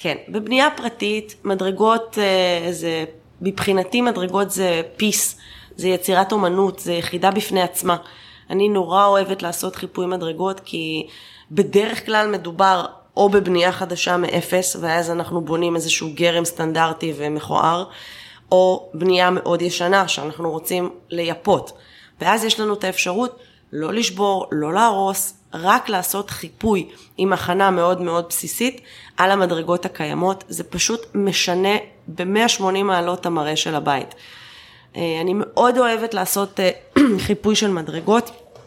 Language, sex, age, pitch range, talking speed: Hebrew, female, 20-39, 170-205 Hz, 125 wpm